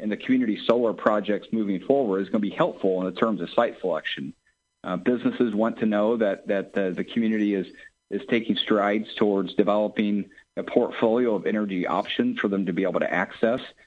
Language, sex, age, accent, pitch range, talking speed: English, male, 50-69, American, 100-125 Hz, 200 wpm